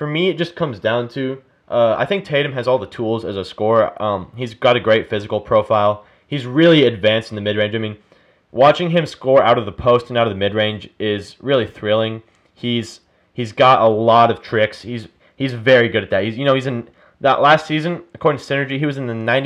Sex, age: male, 30-49